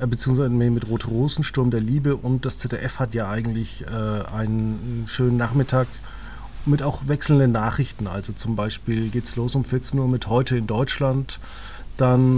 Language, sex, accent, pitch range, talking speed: German, male, German, 115-140 Hz, 170 wpm